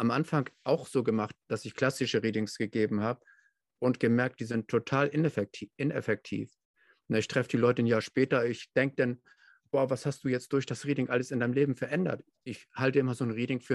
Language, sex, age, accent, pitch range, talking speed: German, male, 50-69, German, 110-135 Hz, 205 wpm